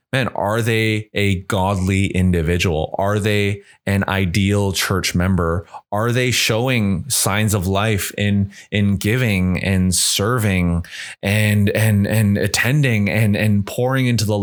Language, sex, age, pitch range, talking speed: English, male, 20-39, 95-115 Hz, 135 wpm